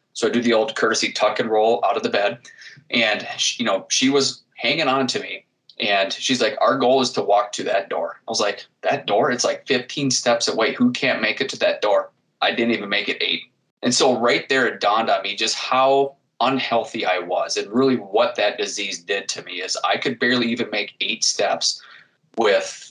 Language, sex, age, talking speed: English, male, 20-39, 225 wpm